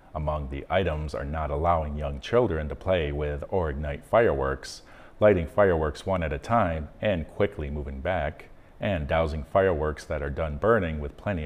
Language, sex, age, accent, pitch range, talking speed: English, male, 40-59, American, 75-90 Hz, 175 wpm